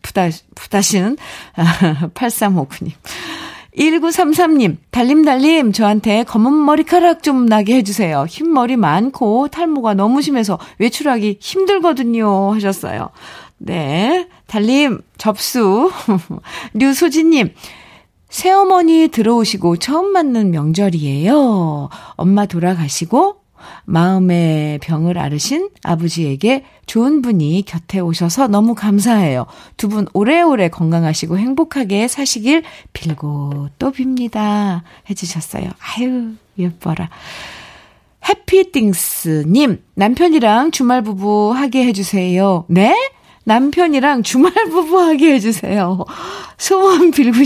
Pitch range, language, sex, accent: 185-285 Hz, Korean, female, native